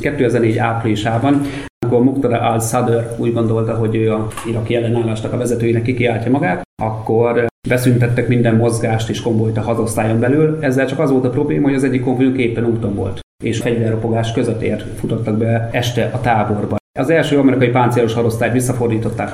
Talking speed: 155 wpm